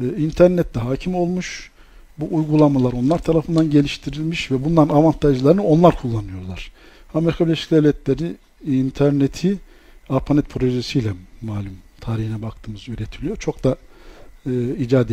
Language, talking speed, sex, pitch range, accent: Turkish, 110 wpm, male, 115-155 Hz, native